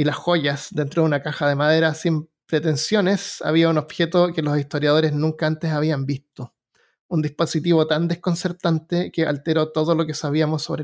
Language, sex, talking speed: Spanish, male, 175 wpm